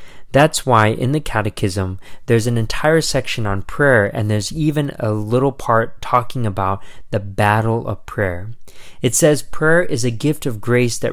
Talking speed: 175 wpm